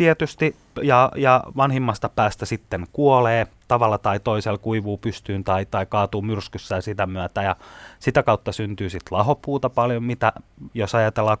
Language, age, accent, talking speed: Finnish, 30-49, native, 145 wpm